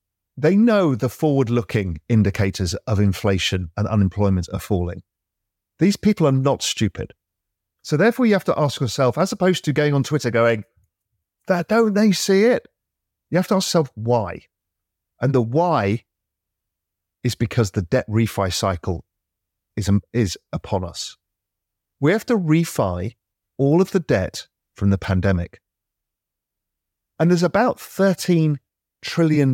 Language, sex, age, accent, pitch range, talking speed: English, male, 40-59, British, 100-160 Hz, 145 wpm